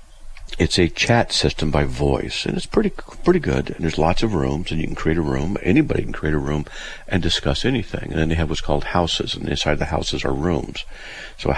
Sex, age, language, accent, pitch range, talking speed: male, 50-69, English, American, 70-85 Hz, 235 wpm